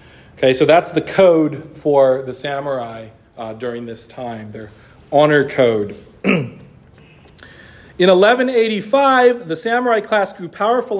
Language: English